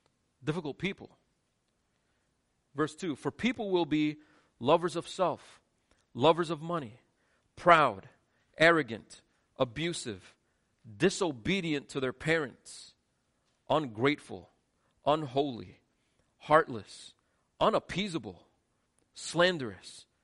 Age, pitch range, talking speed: 40-59, 125-185 Hz, 75 wpm